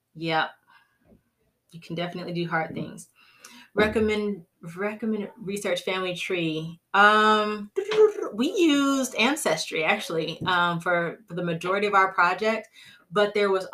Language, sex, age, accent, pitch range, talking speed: English, female, 30-49, American, 160-200 Hz, 120 wpm